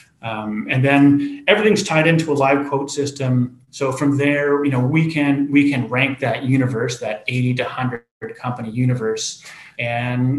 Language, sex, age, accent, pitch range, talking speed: English, male, 30-49, American, 130-150 Hz, 165 wpm